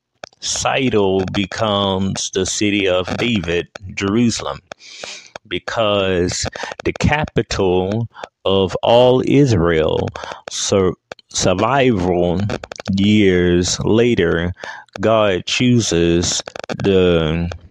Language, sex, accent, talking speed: English, male, American, 65 wpm